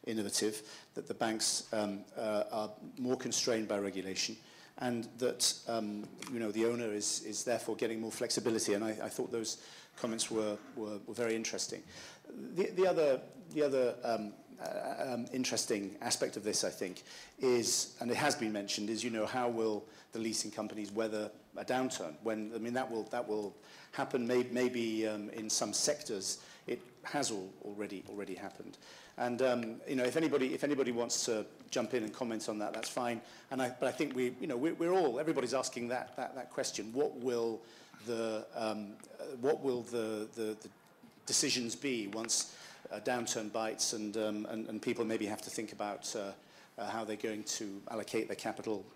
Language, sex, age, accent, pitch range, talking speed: English, male, 50-69, British, 105-125 Hz, 180 wpm